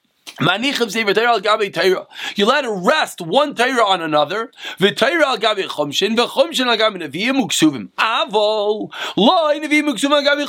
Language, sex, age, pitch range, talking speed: English, male, 30-49, 215-295 Hz, 145 wpm